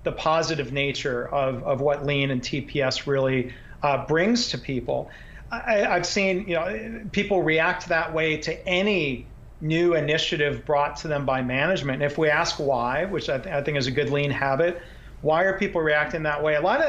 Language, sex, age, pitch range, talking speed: English, male, 40-59, 140-170 Hz, 200 wpm